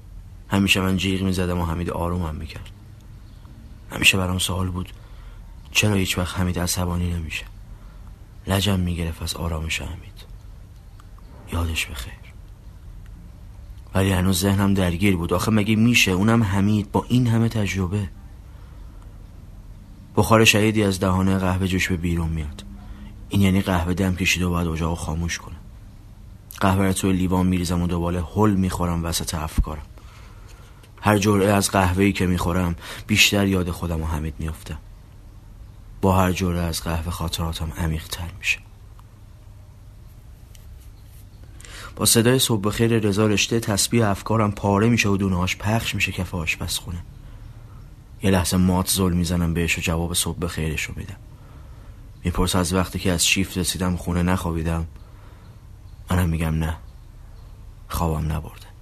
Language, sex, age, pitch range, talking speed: Persian, male, 30-49, 90-105 Hz, 130 wpm